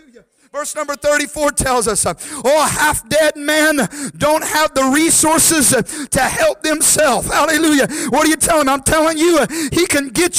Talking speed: 160 wpm